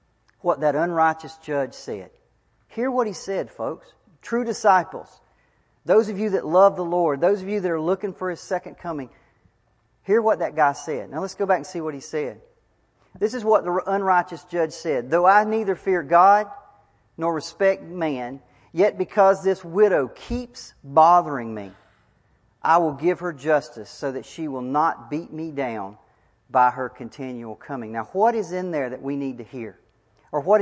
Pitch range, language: 140-195 Hz, English